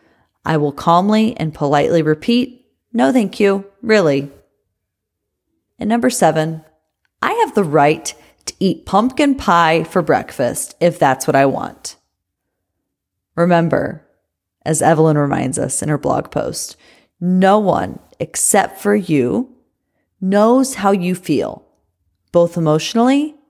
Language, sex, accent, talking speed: English, female, American, 125 wpm